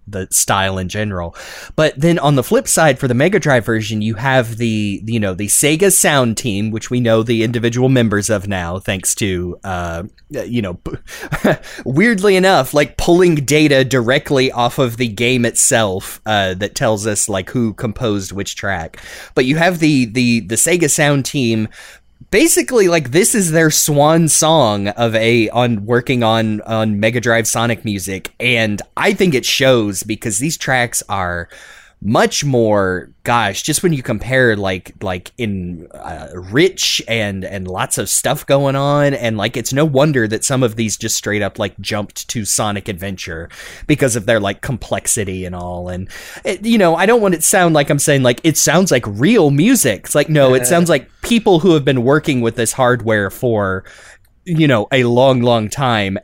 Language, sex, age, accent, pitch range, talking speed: English, male, 20-39, American, 105-140 Hz, 185 wpm